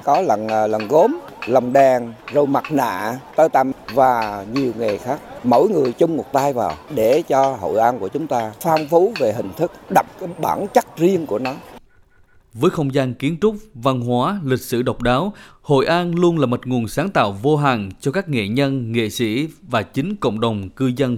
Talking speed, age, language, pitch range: 205 wpm, 20-39, Vietnamese, 120-150 Hz